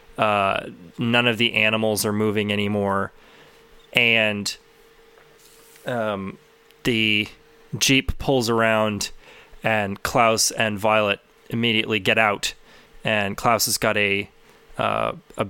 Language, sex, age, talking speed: English, male, 20-39, 110 wpm